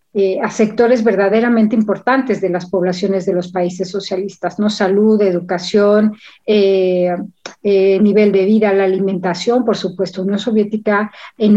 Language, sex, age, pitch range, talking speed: Spanish, female, 40-59, 190-215 Hz, 140 wpm